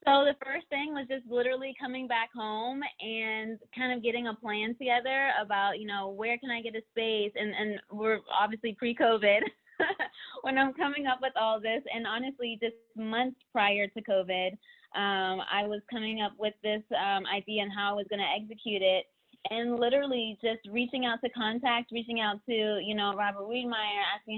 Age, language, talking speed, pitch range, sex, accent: 20-39, English, 190 wpm, 205-240 Hz, female, American